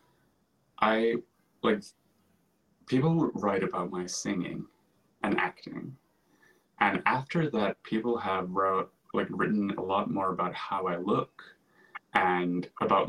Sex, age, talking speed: male, 20-39, 120 wpm